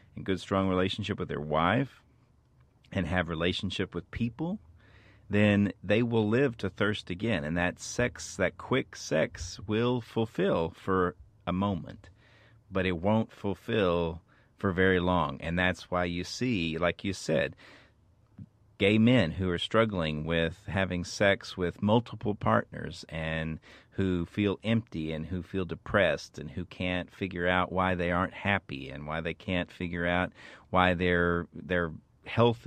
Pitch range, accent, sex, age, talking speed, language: 85-105 Hz, American, male, 40-59, 150 wpm, English